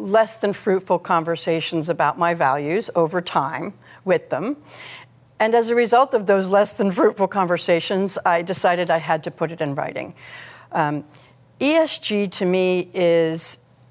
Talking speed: 150 wpm